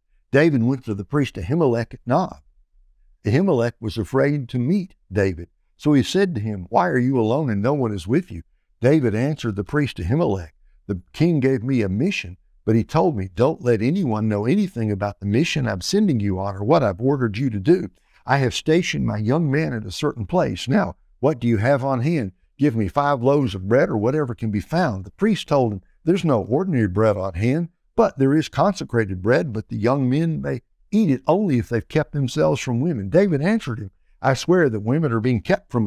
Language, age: English, 60-79